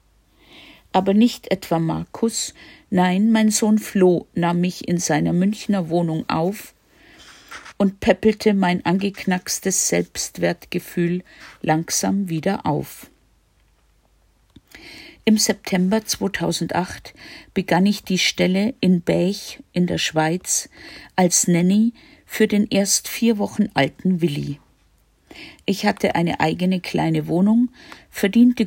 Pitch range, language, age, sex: 160-215 Hz, German, 50-69, female